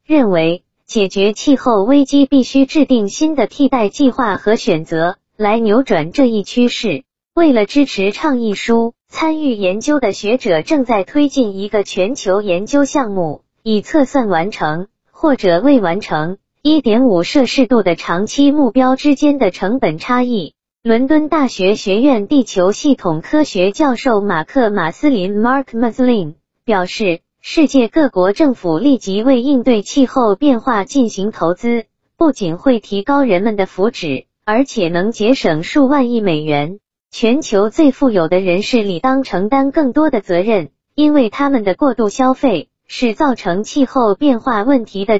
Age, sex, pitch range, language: 20-39, female, 195-275 Hz, Chinese